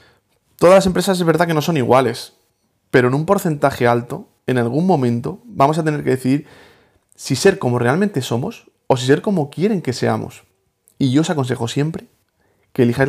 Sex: male